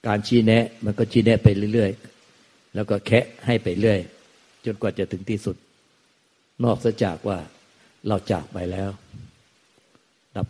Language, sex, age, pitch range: Thai, male, 60-79, 95-115 Hz